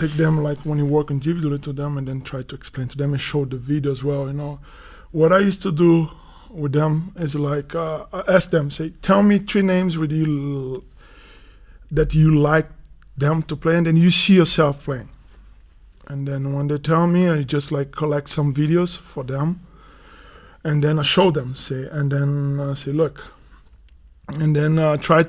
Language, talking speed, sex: German, 200 wpm, male